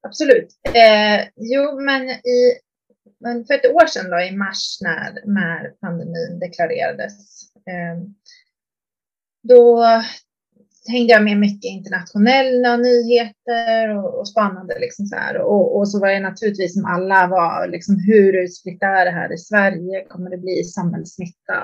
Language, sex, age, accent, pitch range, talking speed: Swedish, female, 30-49, native, 185-235 Hz, 135 wpm